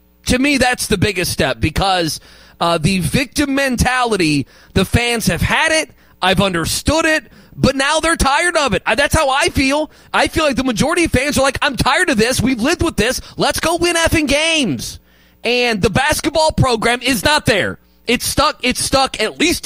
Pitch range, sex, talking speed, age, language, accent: 190-270 Hz, male, 195 wpm, 30-49, English, American